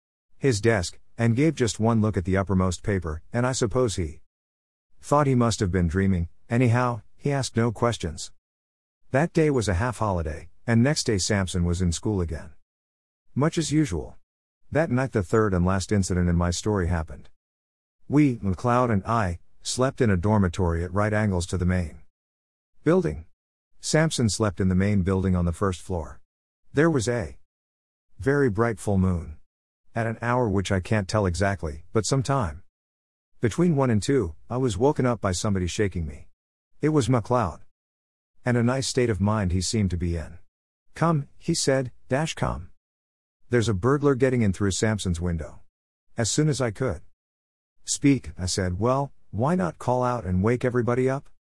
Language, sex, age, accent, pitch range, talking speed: Malayalam, male, 50-69, American, 85-125 Hz, 180 wpm